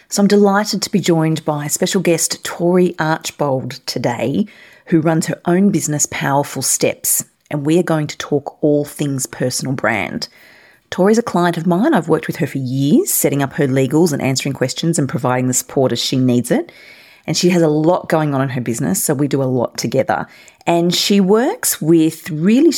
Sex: female